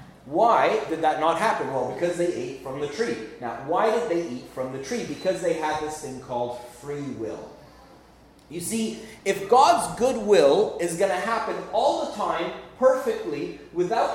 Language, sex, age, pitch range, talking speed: English, male, 30-49, 160-235 Hz, 180 wpm